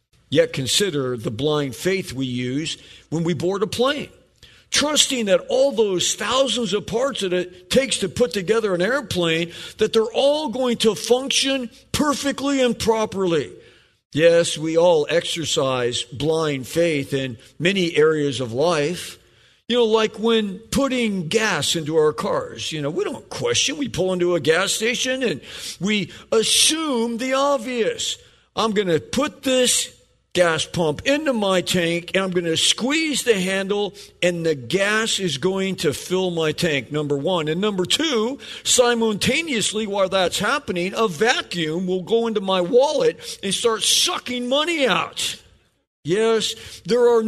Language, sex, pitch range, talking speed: English, male, 170-245 Hz, 155 wpm